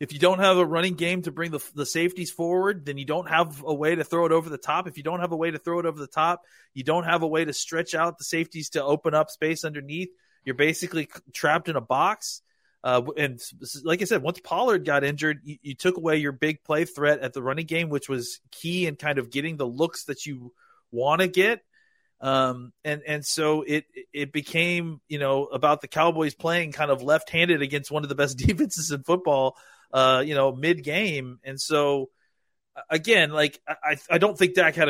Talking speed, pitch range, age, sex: 225 wpm, 135-165 Hz, 30-49, male